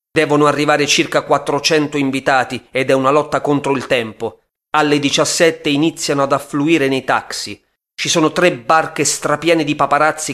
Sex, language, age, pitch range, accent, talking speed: male, Italian, 30-49, 120-145 Hz, native, 150 wpm